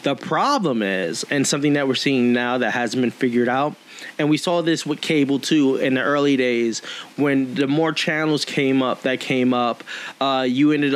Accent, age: American, 20-39